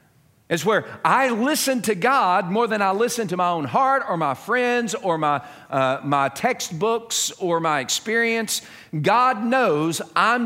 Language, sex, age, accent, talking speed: English, male, 50-69, American, 160 wpm